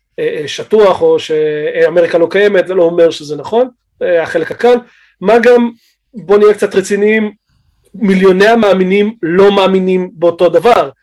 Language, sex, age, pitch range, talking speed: Hebrew, male, 30-49, 170-215 Hz, 130 wpm